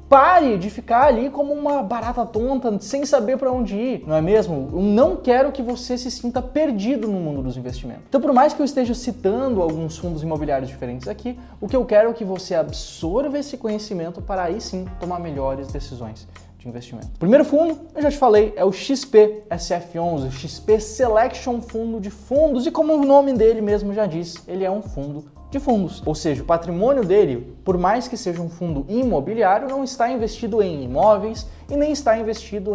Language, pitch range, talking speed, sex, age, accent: Portuguese, 170-250 Hz, 200 wpm, male, 20-39, Brazilian